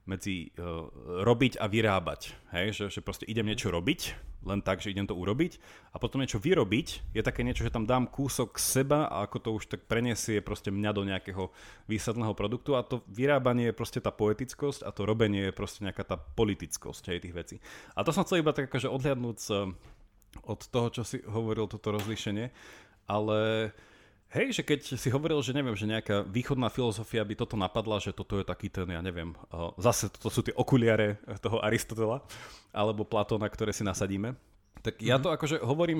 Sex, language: male, Slovak